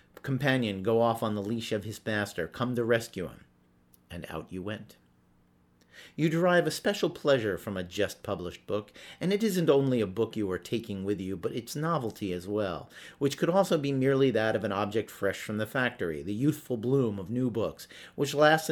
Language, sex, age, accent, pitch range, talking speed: English, male, 50-69, American, 95-135 Hz, 200 wpm